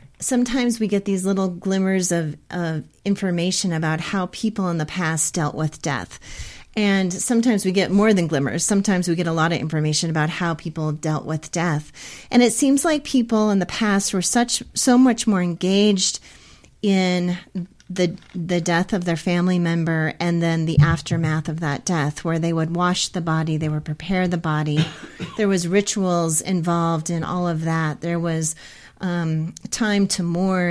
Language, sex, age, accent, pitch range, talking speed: English, female, 30-49, American, 160-190 Hz, 180 wpm